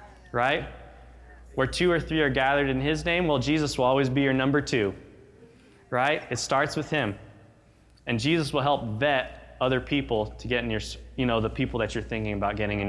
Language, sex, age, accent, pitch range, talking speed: English, male, 20-39, American, 100-135 Hz, 205 wpm